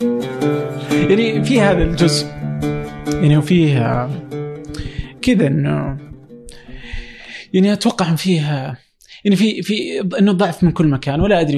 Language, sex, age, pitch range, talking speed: Arabic, male, 20-39, 130-170 Hz, 115 wpm